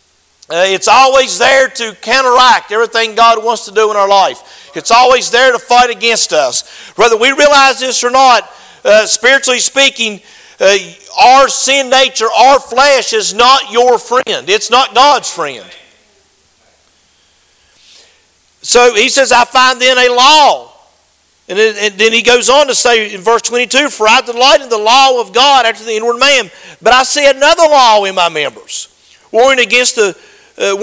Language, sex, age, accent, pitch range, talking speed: English, male, 50-69, American, 230-270 Hz, 170 wpm